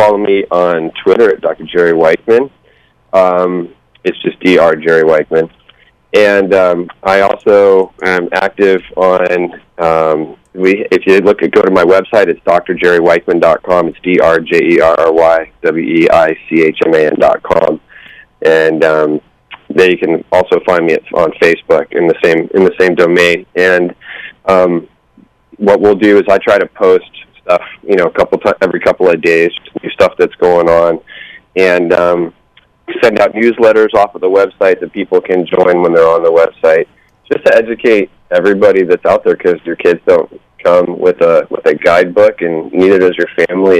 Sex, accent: male, American